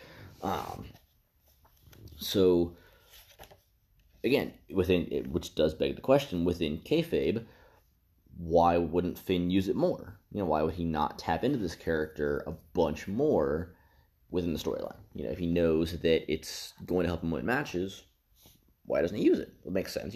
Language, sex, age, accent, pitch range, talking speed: English, male, 30-49, American, 80-100 Hz, 165 wpm